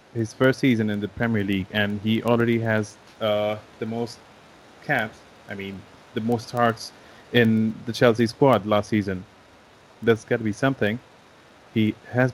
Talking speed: 160 wpm